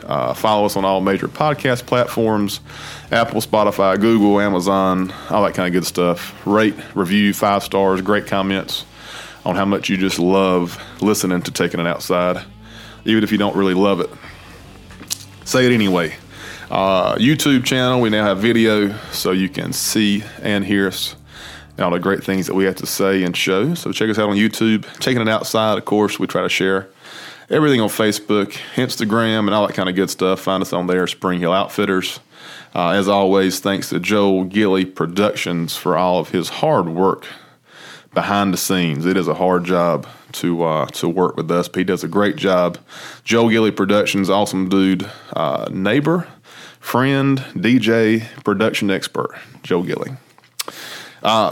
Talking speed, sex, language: 175 wpm, male, English